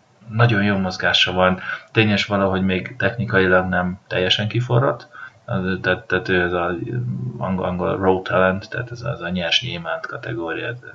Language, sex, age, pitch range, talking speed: Hungarian, male, 30-49, 95-115 Hz, 150 wpm